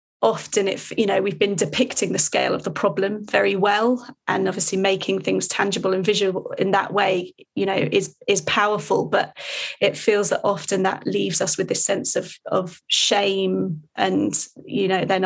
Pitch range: 185-215 Hz